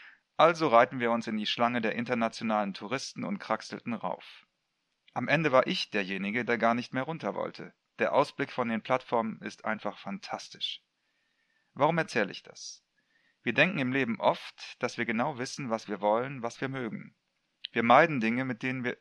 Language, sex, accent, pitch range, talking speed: German, male, German, 110-140 Hz, 180 wpm